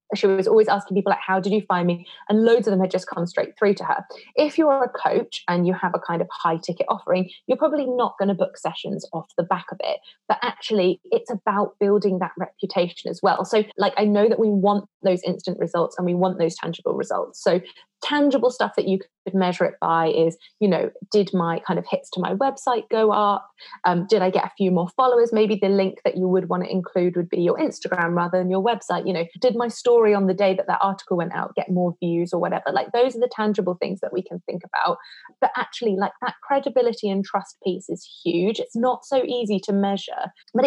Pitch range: 185-245 Hz